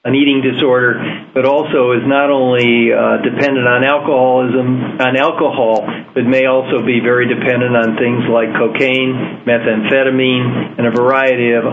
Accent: American